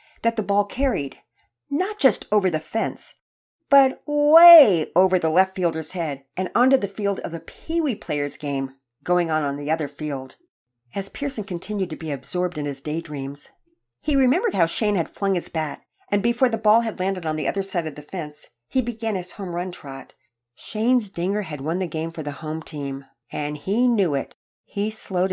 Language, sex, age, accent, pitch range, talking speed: English, female, 50-69, American, 155-210 Hz, 195 wpm